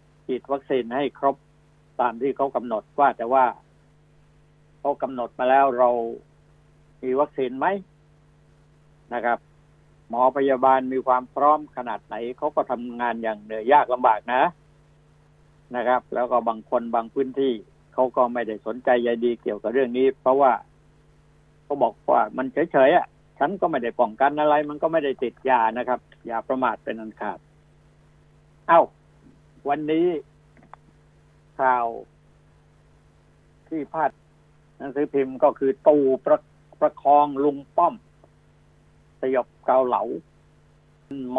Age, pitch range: 60-79, 110-145 Hz